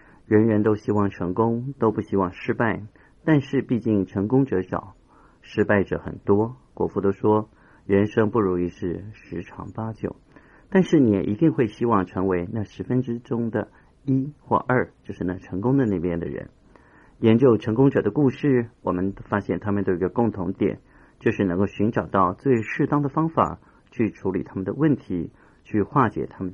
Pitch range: 95-125 Hz